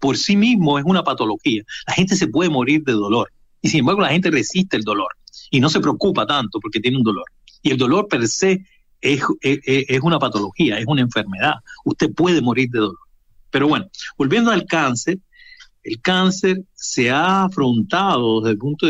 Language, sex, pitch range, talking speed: Spanish, male, 120-180 Hz, 195 wpm